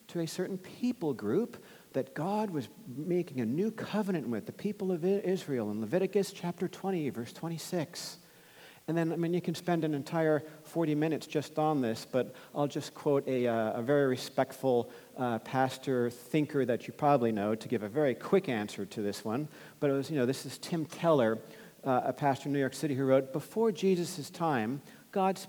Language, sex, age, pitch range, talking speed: English, male, 50-69, 135-180 Hz, 200 wpm